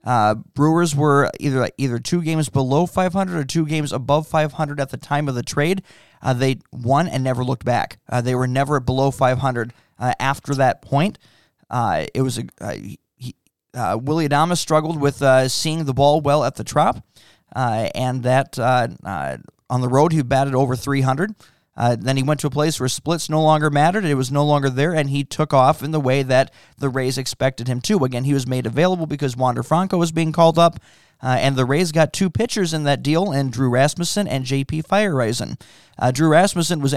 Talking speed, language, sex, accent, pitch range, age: 215 wpm, English, male, American, 130-160 Hz, 20-39